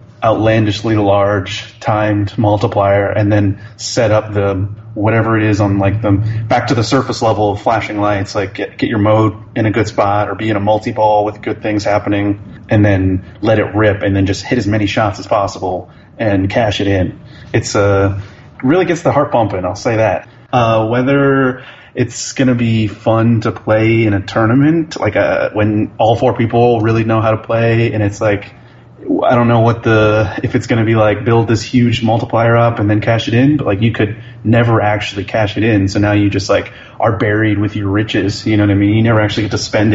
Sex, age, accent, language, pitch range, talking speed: male, 30-49, American, English, 100-115 Hz, 220 wpm